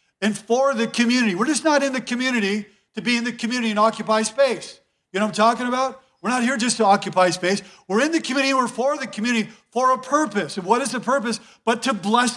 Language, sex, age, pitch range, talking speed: English, male, 50-69, 195-230 Hz, 245 wpm